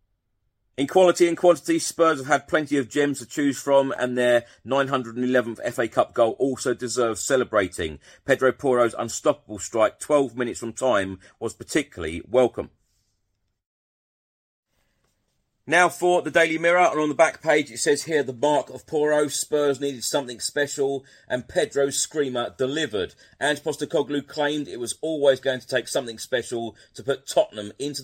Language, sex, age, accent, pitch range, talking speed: English, male, 40-59, British, 115-150 Hz, 155 wpm